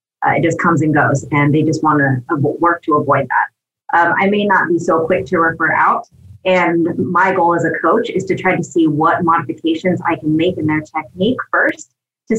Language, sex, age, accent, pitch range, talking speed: English, female, 30-49, American, 145-185 Hz, 230 wpm